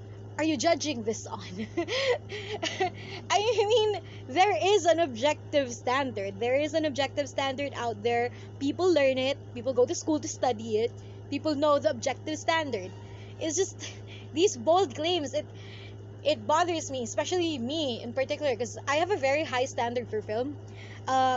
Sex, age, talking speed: female, 20-39, 160 wpm